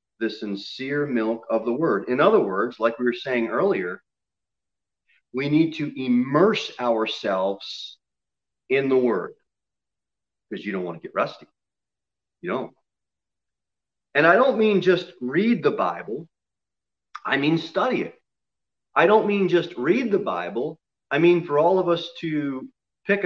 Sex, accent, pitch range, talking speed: male, American, 130-200 Hz, 150 wpm